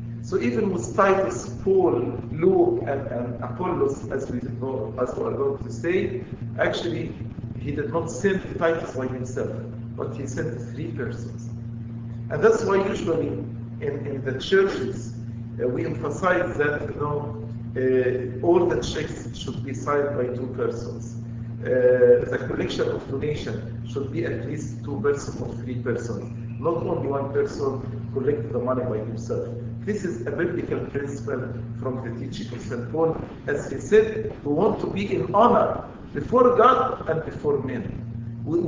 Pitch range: 115-145 Hz